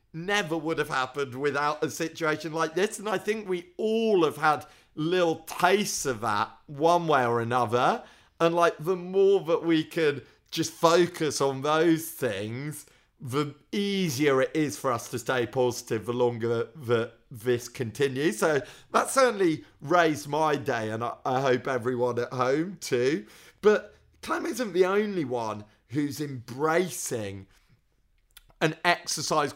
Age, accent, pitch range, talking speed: 40-59, British, 130-180 Hz, 150 wpm